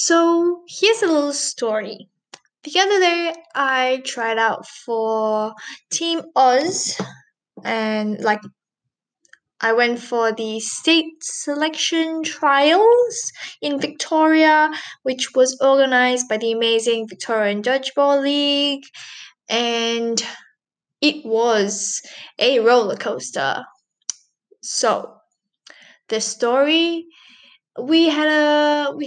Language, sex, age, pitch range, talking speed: English, female, 10-29, 225-300 Hz, 100 wpm